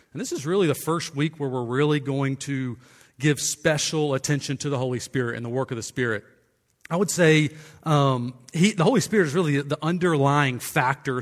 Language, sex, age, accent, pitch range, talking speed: English, male, 40-59, American, 135-175 Hz, 200 wpm